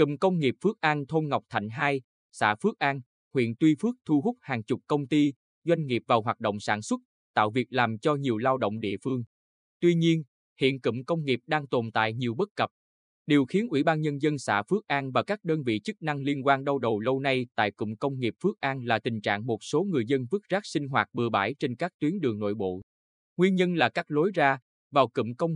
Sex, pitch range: male, 115-150 Hz